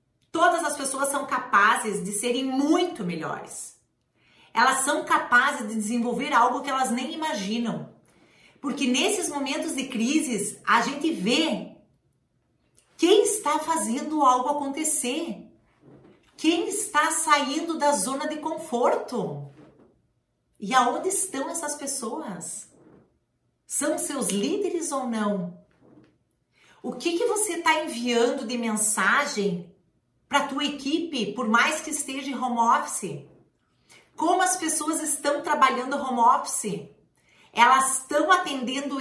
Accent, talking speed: Brazilian, 120 wpm